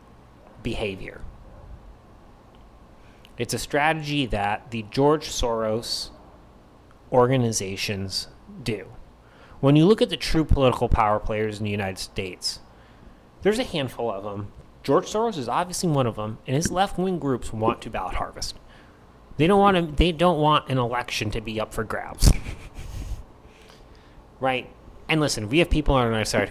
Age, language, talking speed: 30-49, English, 150 wpm